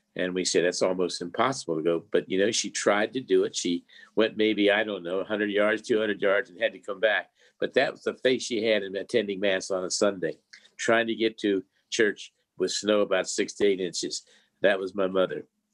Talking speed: 225 wpm